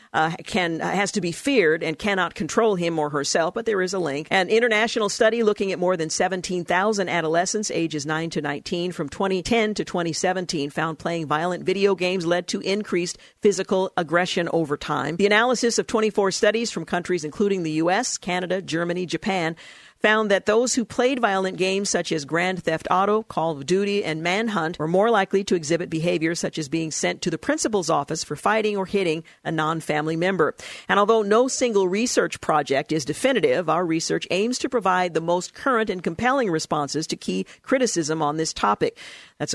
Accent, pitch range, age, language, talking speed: American, 165-210 Hz, 50-69, English, 190 wpm